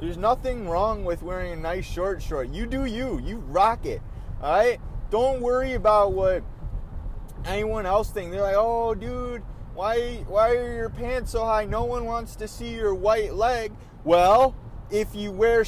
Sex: male